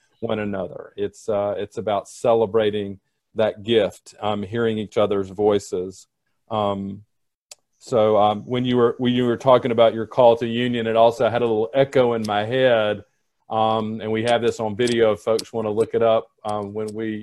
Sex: male